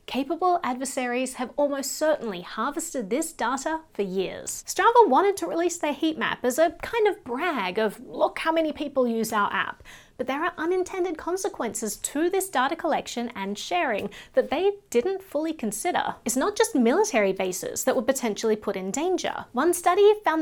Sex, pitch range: female, 235-345 Hz